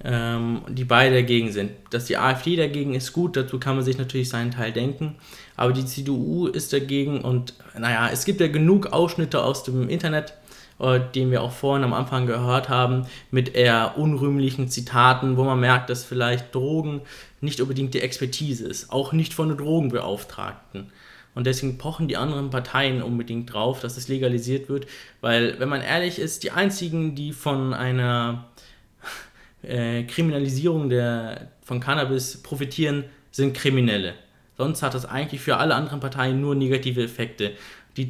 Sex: male